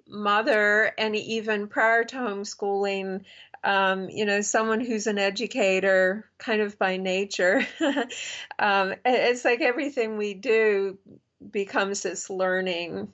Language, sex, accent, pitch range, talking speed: English, female, American, 190-220 Hz, 120 wpm